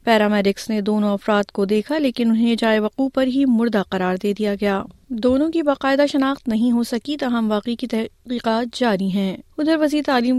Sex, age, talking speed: female, 30-49, 185 wpm